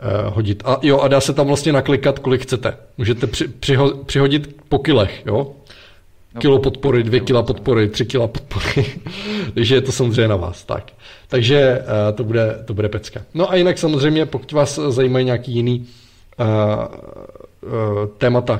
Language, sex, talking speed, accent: Czech, male, 170 wpm, native